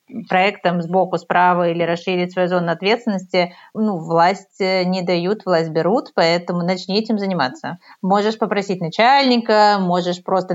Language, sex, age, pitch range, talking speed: Russian, female, 30-49, 180-220 Hz, 130 wpm